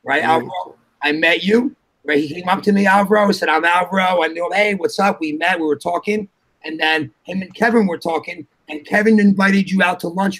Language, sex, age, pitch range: English, male, 30-49, 165-215 Hz